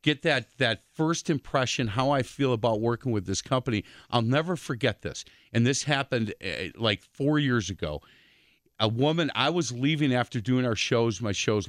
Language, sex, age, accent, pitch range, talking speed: English, male, 40-59, American, 105-135 Hz, 185 wpm